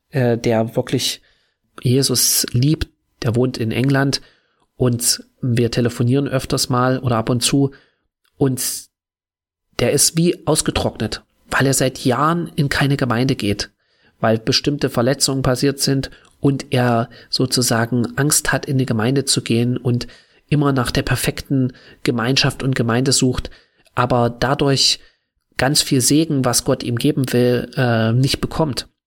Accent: German